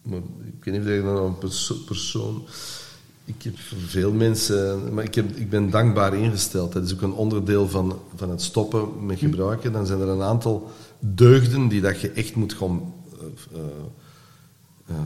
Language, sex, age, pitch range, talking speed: Dutch, male, 50-69, 95-140 Hz, 180 wpm